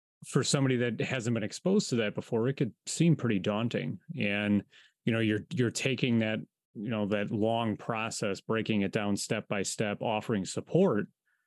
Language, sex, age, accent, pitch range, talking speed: English, male, 30-49, American, 105-125 Hz, 165 wpm